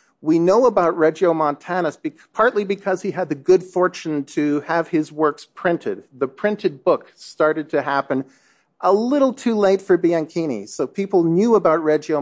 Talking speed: 165 wpm